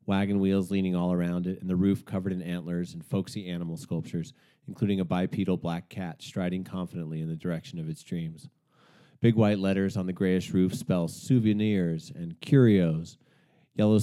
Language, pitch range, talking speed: English, 90-120 Hz, 175 wpm